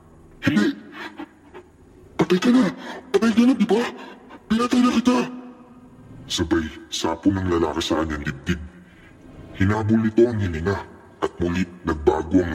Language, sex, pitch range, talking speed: English, female, 80-130 Hz, 120 wpm